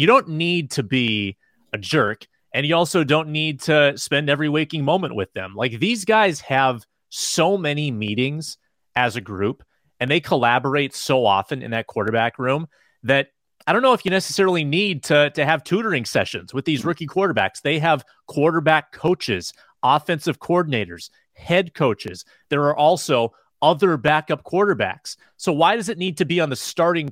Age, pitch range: 30-49, 125-160 Hz